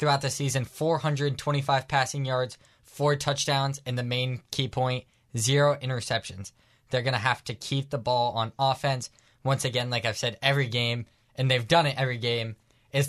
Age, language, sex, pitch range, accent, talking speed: 10-29, English, male, 115-135 Hz, American, 180 wpm